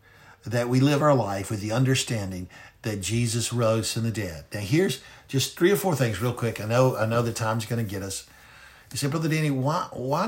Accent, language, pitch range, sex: American, English, 105-125 Hz, male